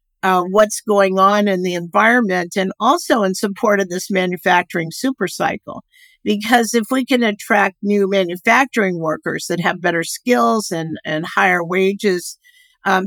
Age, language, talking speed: 50-69, English, 150 wpm